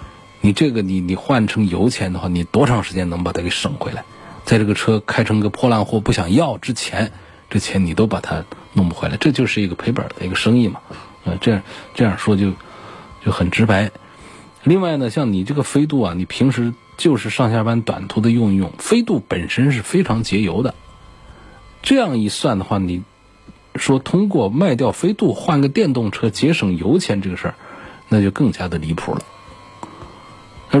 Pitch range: 95-130 Hz